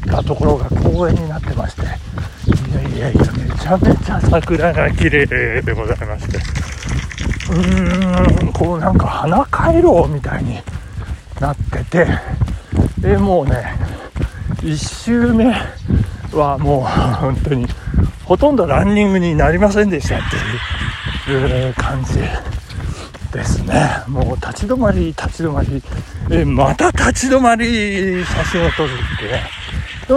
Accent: native